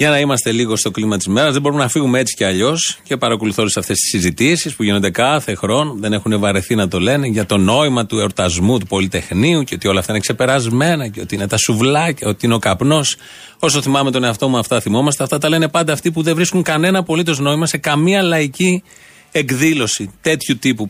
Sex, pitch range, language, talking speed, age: male, 115-160 Hz, Greek, 225 wpm, 30-49